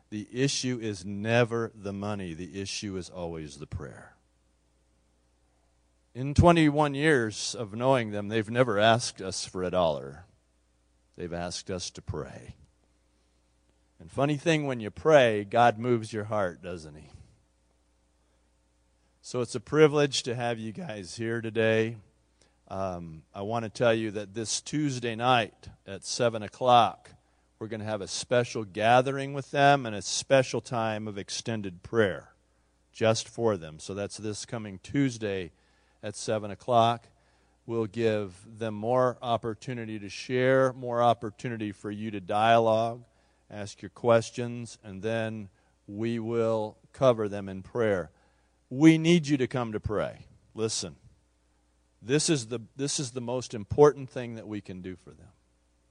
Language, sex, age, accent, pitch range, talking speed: English, male, 40-59, American, 85-120 Hz, 145 wpm